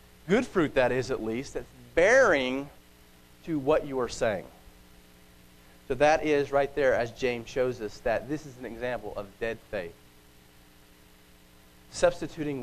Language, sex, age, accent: English, male, 40-59, American